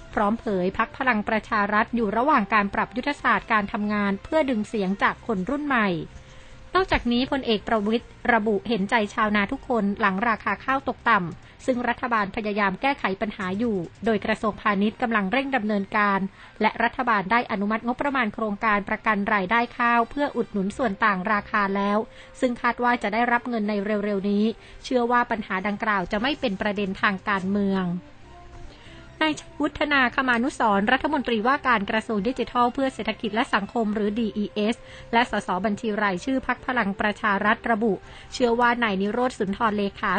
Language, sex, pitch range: Thai, female, 205-245 Hz